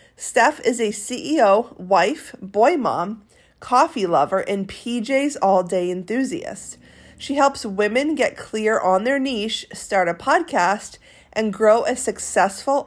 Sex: female